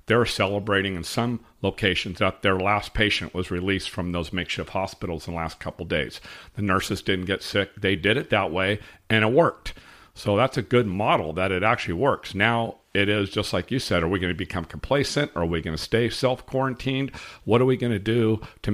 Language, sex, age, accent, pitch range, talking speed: English, male, 50-69, American, 95-120 Hz, 225 wpm